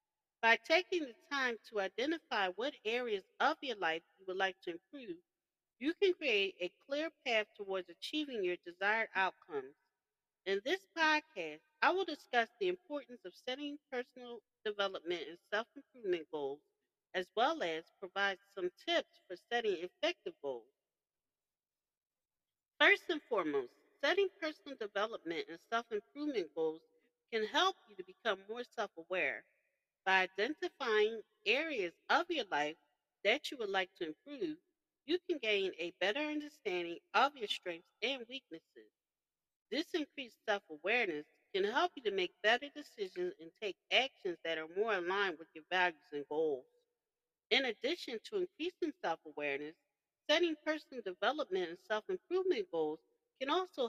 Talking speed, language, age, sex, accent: 140 wpm, English, 40-59, female, American